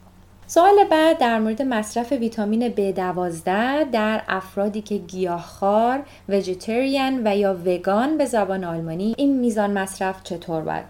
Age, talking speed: 30-49, 130 wpm